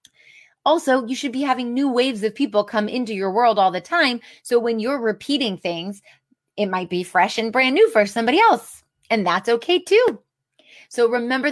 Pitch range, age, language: 205-290 Hz, 30-49, English